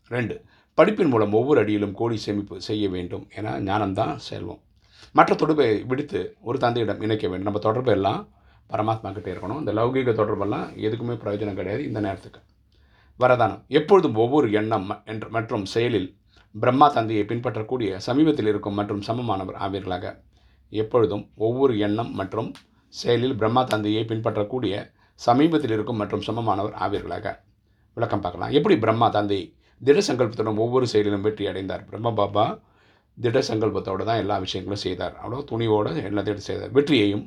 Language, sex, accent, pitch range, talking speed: Tamil, male, native, 100-115 Hz, 130 wpm